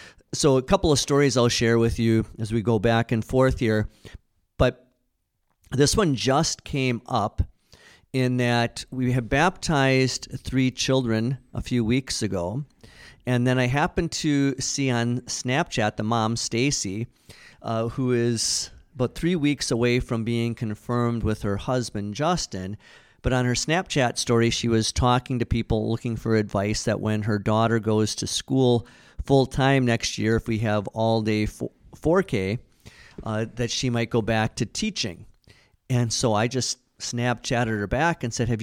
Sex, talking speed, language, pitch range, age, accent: male, 160 wpm, English, 110-130 Hz, 50-69, American